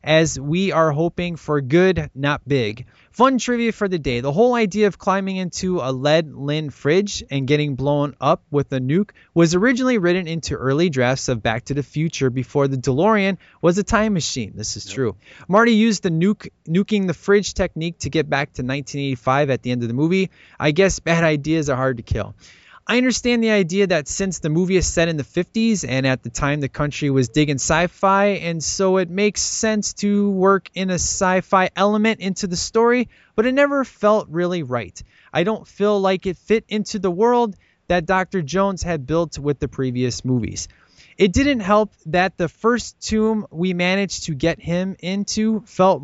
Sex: male